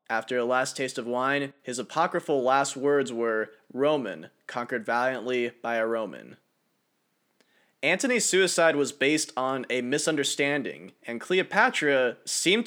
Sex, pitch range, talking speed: male, 125-145 Hz, 130 wpm